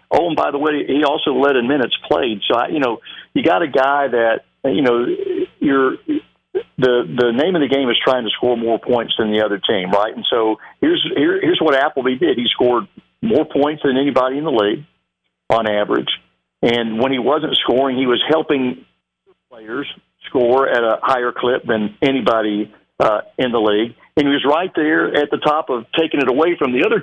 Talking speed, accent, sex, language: 205 wpm, American, male, English